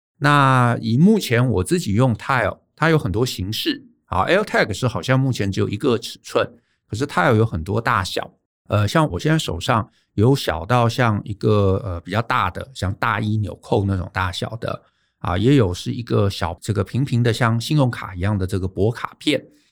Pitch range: 95-125 Hz